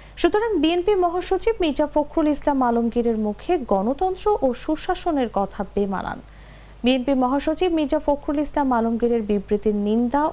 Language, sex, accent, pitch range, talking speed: English, female, Indian, 230-315 Hz, 110 wpm